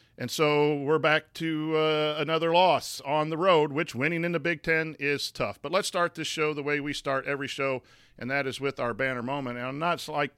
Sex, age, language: male, 40-59, English